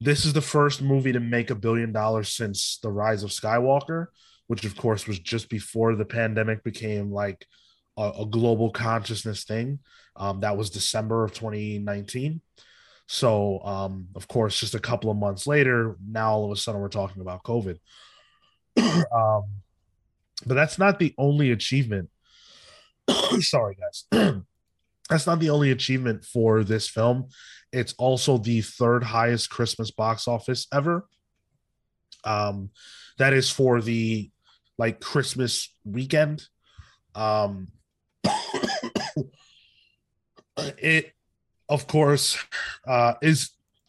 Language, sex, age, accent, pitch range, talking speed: English, male, 20-39, American, 105-130 Hz, 130 wpm